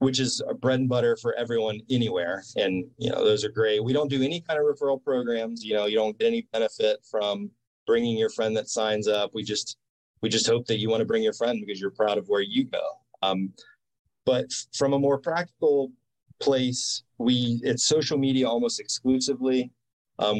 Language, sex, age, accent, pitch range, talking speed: English, male, 30-49, American, 110-135 Hz, 205 wpm